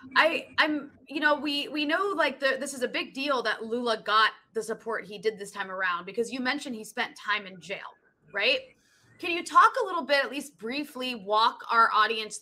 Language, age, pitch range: English, 20-39, 205-275 Hz